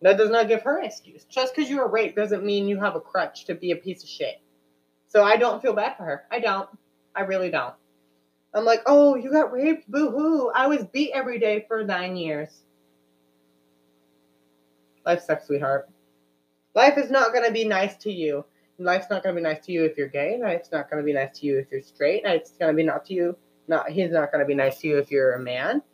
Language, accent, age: English, American, 20-39